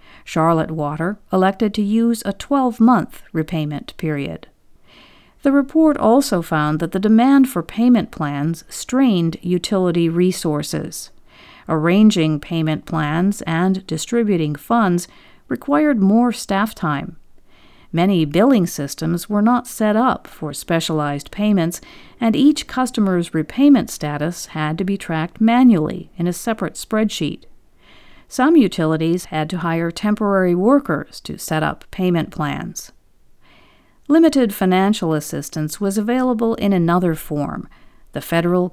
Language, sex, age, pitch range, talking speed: English, female, 50-69, 160-225 Hz, 120 wpm